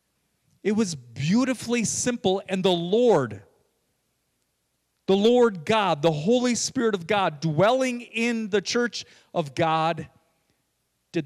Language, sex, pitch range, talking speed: English, male, 145-195 Hz, 115 wpm